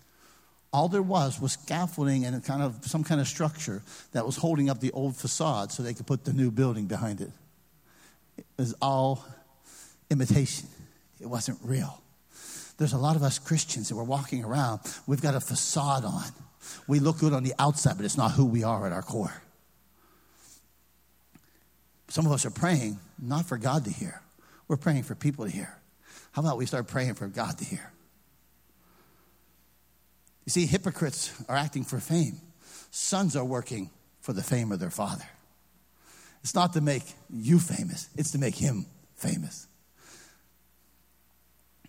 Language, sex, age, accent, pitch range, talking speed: English, male, 60-79, American, 115-160 Hz, 170 wpm